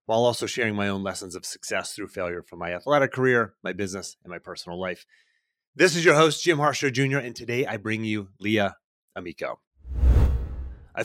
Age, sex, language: 30-49, male, English